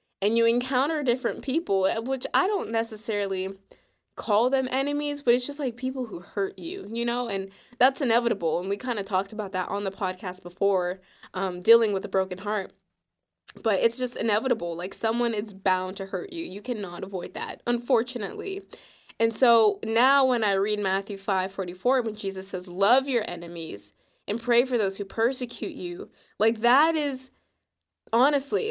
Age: 20-39